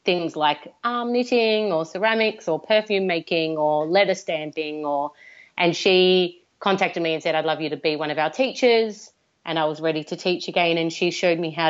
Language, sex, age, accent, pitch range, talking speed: English, female, 30-49, Australian, 165-200 Hz, 205 wpm